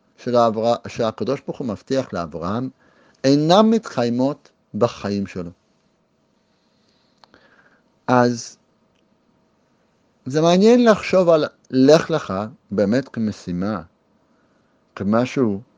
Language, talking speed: Hebrew, 75 wpm